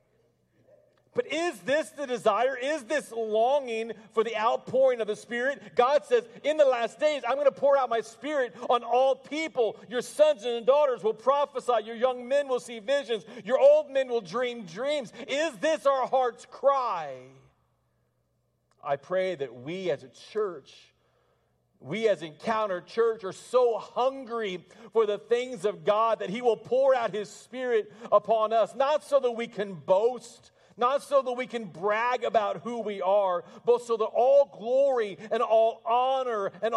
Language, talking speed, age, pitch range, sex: English, 175 wpm, 40-59, 190-255 Hz, male